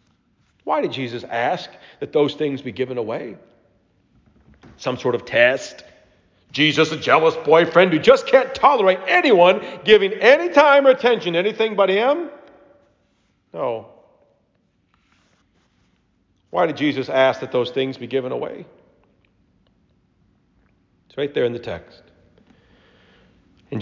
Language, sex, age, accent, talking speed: English, male, 40-59, American, 125 wpm